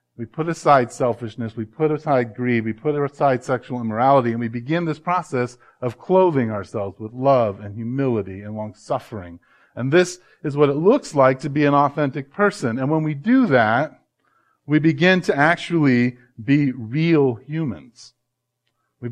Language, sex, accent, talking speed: English, male, American, 165 wpm